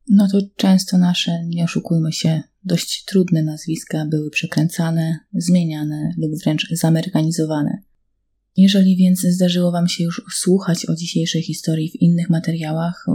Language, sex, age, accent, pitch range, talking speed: Polish, female, 20-39, native, 155-190 Hz, 130 wpm